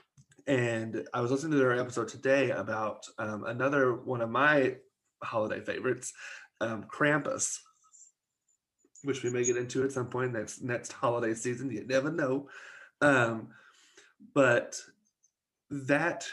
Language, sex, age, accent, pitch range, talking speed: English, male, 30-49, American, 120-145 Hz, 130 wpm